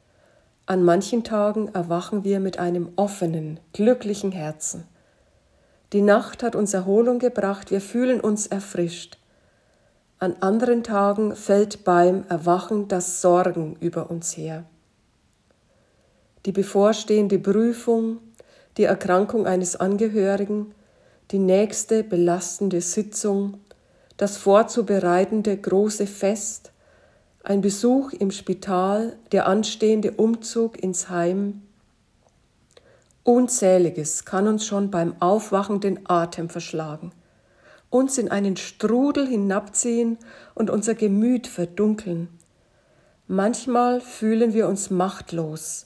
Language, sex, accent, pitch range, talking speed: German, female, German, 185-220 Hz, 100 wpm